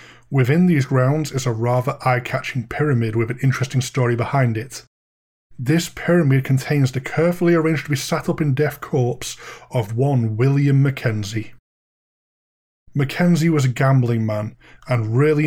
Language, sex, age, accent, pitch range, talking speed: English, male, 30-49, British, 120-155 Hz, 145 wpm